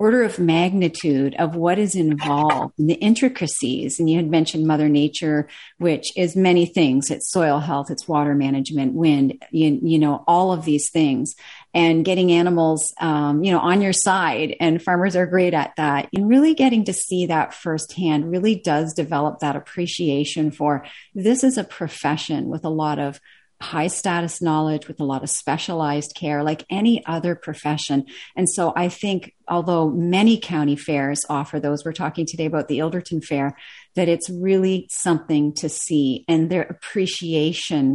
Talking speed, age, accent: 170 wpm, 40-59, American